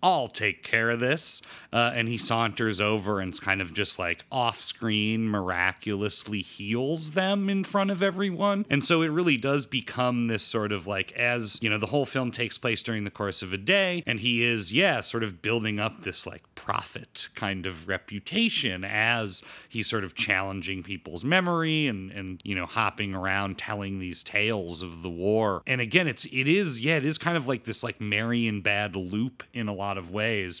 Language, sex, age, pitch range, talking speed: English, male, 30-49, 100-135 Hz, 200 wpm